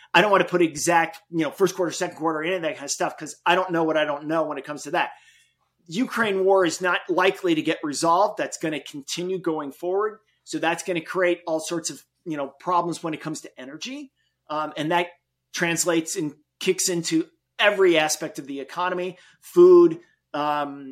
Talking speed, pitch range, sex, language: 215 wpm, 160-225 Hz, male, English